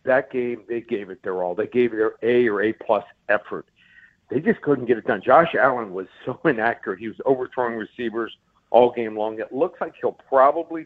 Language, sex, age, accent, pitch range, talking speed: English, male, 60-79, American, 115-130 Hz, 210 wpm